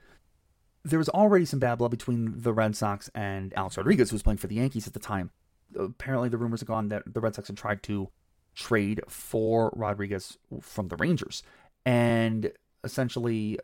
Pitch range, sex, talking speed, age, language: 100-120 Hz, male, 185 wpm, 30-49, English